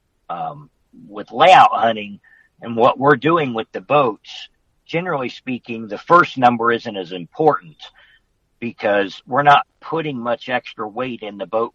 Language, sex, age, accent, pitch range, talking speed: English, male, 50-69, American, 95-120 Hz, 150 wpm